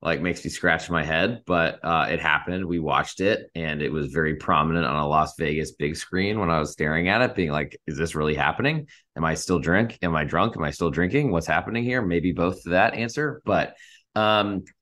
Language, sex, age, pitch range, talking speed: English, male, 20-39, 80-110 Hz, 230 wpm